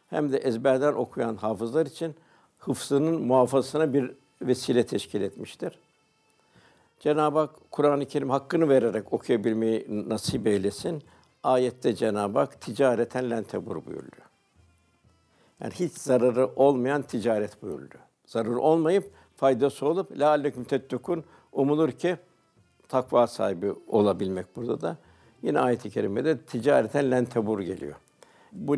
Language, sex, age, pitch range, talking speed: Turkish, male, 60-79, 115-150 Hz, 110 wpm